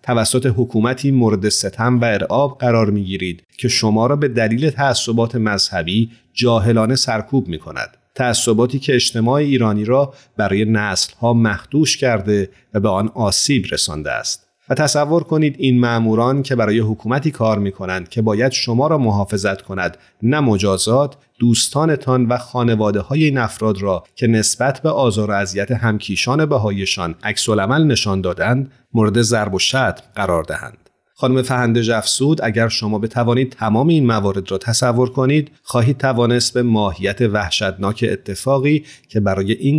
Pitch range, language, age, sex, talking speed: 105-130 Hz, Persian, 30-49, male, 150 wpm